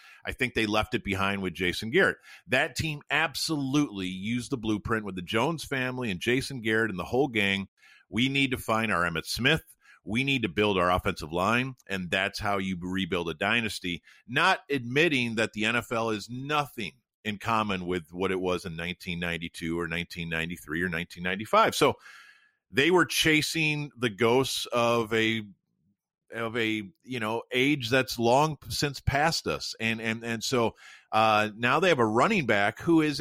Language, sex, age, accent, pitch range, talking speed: English, male, 50-69, American, 95-130 Hz, 175 wpm